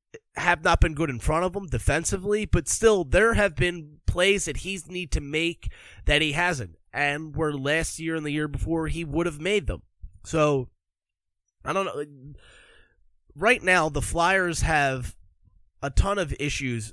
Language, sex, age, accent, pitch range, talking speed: English, male, 20-39, American, 115-170 Hz, 175 wpm